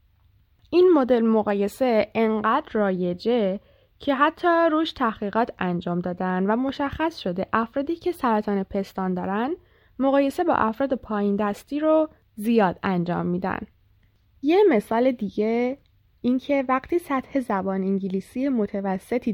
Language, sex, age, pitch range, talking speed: Persian, female, 10-29, 190-275 Hz, 120 wpm